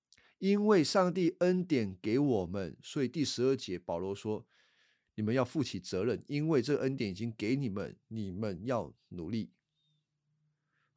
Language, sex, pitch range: Chinese, male, 105-140 Hz